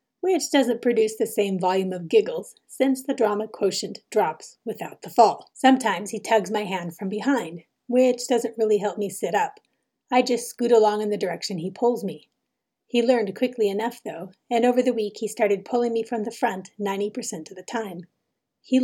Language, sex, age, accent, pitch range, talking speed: English, female, 30-49, American, 200-240 Hz, 195 wpm